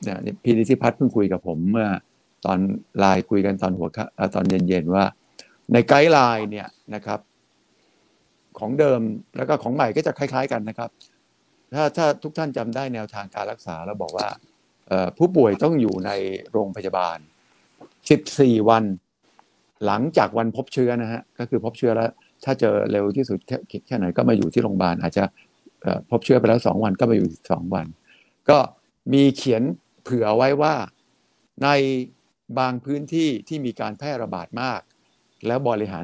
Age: 60-79